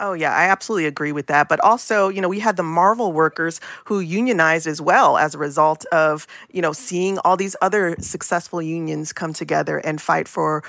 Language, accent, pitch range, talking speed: English, American, 155-195 Hz, 210 wpm